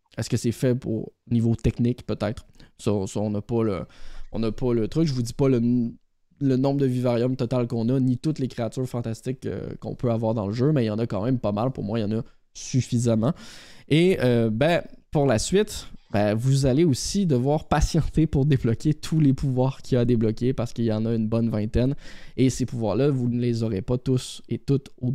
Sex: male